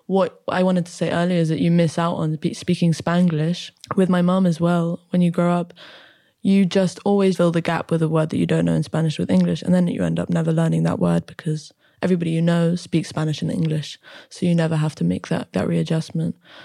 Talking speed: 240 wpm